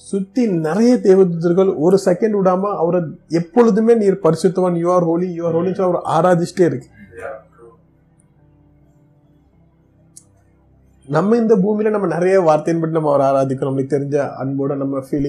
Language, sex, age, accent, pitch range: Tamil, male, 30-49, native, 150-195 Hz